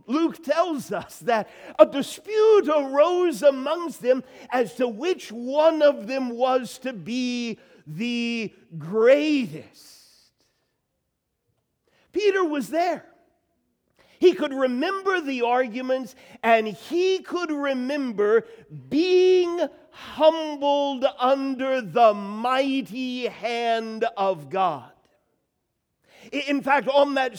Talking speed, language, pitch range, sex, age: 95 wpm, English, 230-290 Hz, male, 50-69